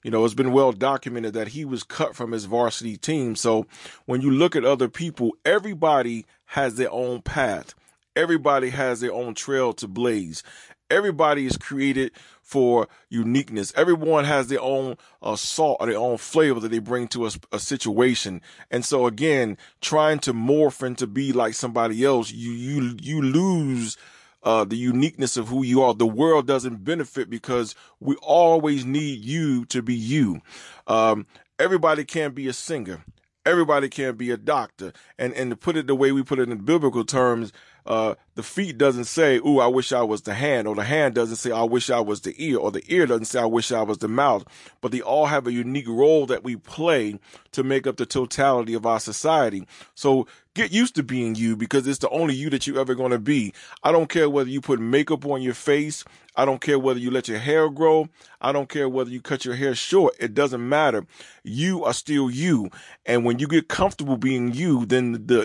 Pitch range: 120-145 Hz